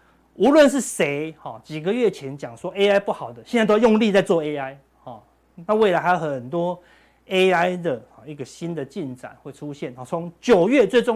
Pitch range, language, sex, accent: 145-200 Hz, Chinese, male, native